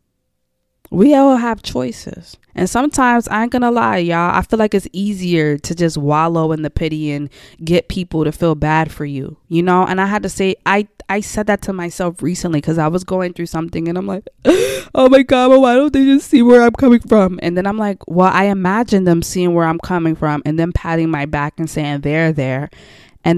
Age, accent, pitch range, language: 20-39, American, 150-195 Hz, English